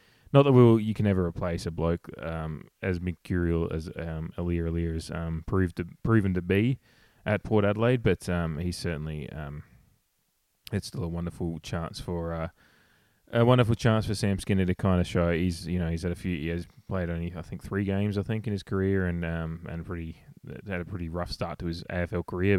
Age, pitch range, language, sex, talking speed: 20-39, 85-100 Hz, English, male, 220 wpm